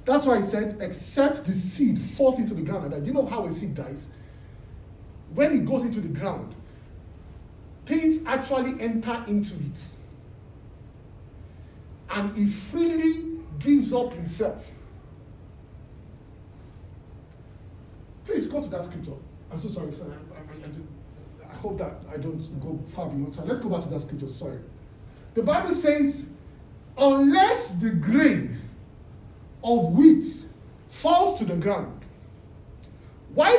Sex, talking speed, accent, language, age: male, 130 wpm, Nigerian, English, 50-69